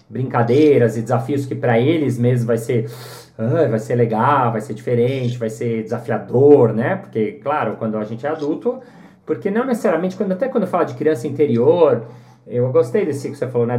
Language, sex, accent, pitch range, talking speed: Portuguese, male, Brazilian, 120-175 Hz, 190 wpm